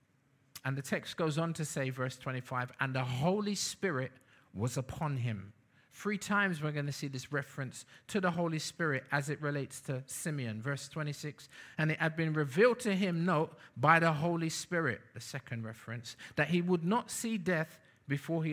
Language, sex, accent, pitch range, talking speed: English, male, British, 130-165 Hz, 190 wpm